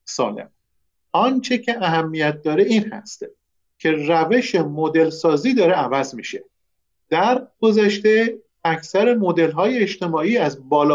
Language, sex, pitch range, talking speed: Persian, male, 160-225 Hz, 110 wpm